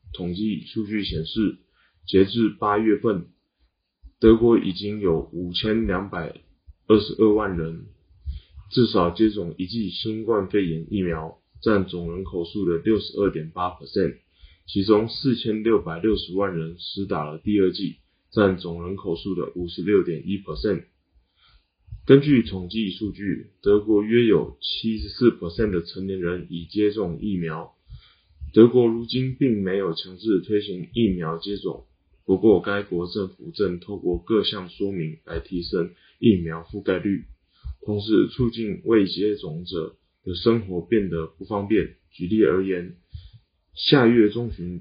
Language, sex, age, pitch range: Chinese, male, 20-39, 85-110 Hz